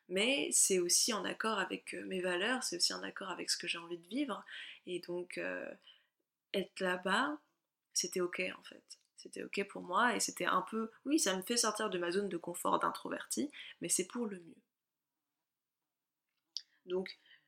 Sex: female